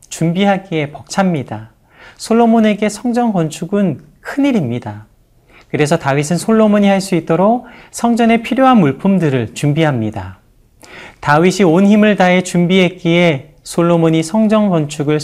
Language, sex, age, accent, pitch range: Korean, male, 40-59, native, 135-200 Hz